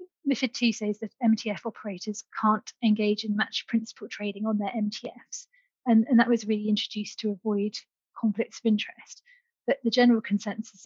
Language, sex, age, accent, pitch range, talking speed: English, female, 30-49, British, 210-235 Hz, 165 wpm